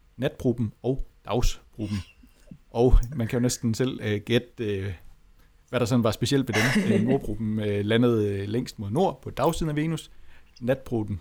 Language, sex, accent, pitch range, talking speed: Danish, male, native, 100-125 Hz, 145 wpm